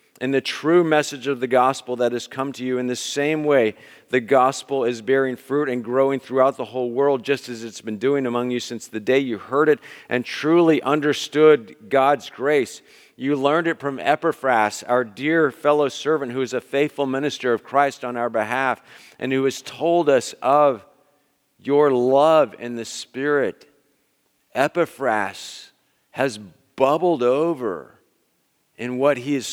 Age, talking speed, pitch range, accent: 50-69, 170 wpm, 125-155 Hz, American